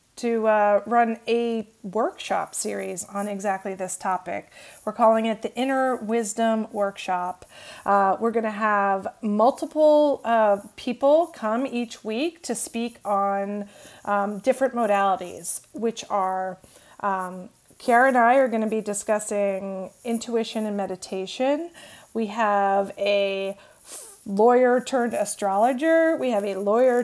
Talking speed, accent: 130 wpm, American